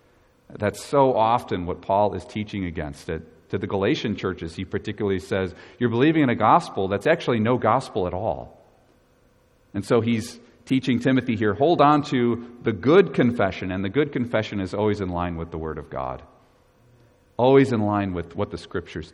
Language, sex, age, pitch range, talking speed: English, male, 40-59, 95-125 Hz, 185 wpm